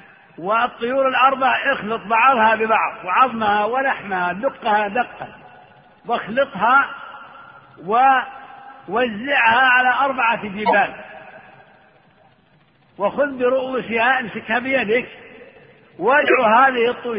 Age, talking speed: 50-69, 75 wpm